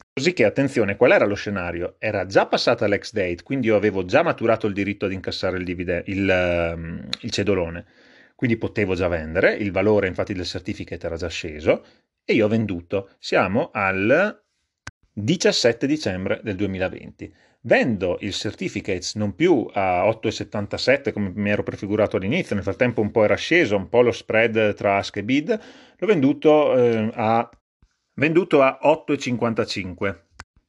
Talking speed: 155 wpm